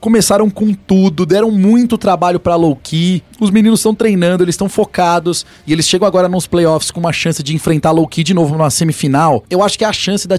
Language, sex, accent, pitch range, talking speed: Portuguese, male, Brazilian, 145-180 Hz, 225 wpm